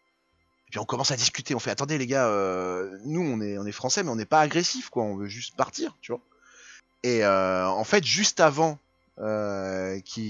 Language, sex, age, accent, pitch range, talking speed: French, male, 20-39, French, 115-175 Hz, 205 wpm